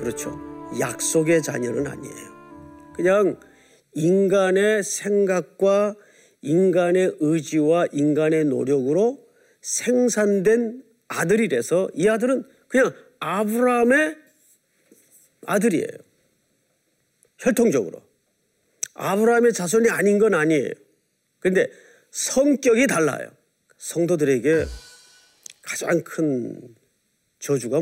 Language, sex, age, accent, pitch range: Korean, male, 40-59, native, 160-255 Hz